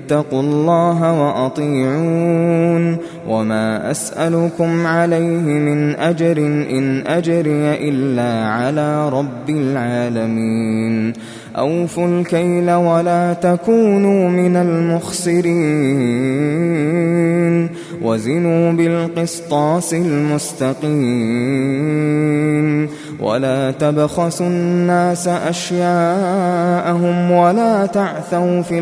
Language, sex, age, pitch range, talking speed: Arabic, male, 20-39, 145-170 Hz, 60 wpm